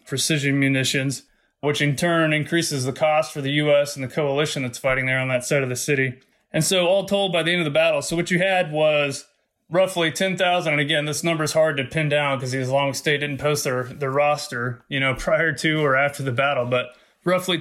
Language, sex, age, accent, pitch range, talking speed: English, male, 20-39, American, 135-165 Hz, 230 wpm